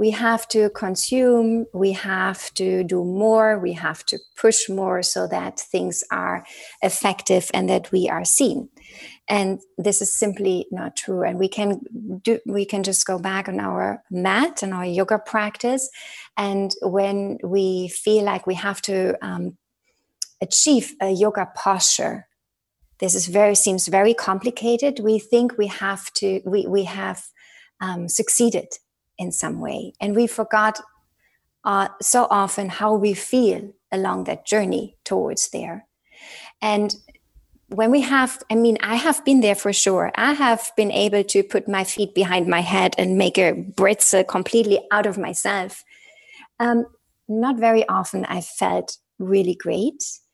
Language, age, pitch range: Dutch, 30-49, 190-230 Hz